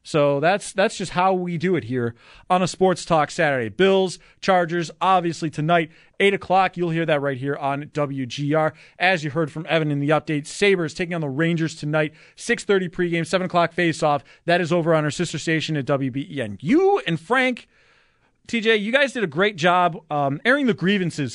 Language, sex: English, male